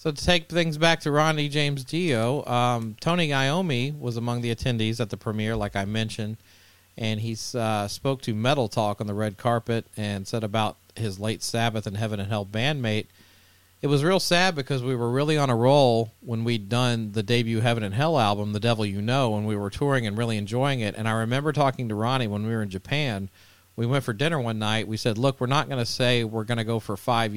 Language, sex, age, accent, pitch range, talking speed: English, male, 40-59, American, 105-125 Hz, 235 wpm